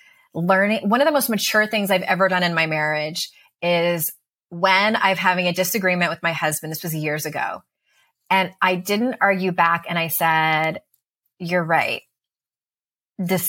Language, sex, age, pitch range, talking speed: English, female, 20-39, 175-230 Hz, 165 wpm